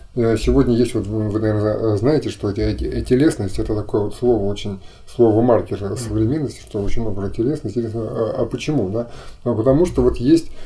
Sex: male